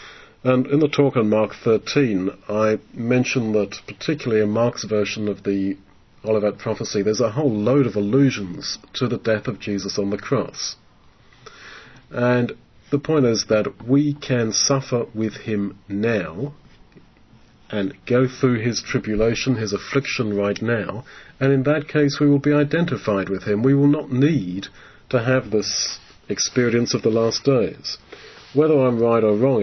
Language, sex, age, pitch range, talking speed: English, male, 40-59, 105-130 Hz, 160 wpm